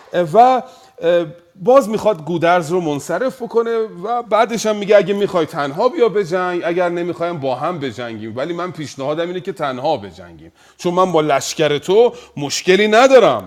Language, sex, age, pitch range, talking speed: Persian, male, 40-59, 120-195 Hz, 155 wpm